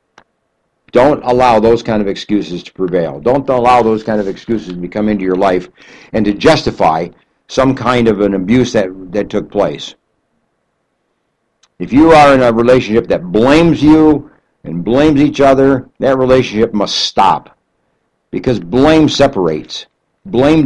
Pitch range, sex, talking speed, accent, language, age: 100-135 Hz, male, 150 wpm, American, English, 60-79